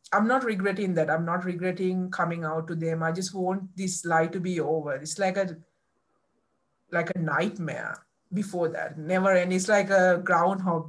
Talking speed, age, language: 180 wpm, 50-69, English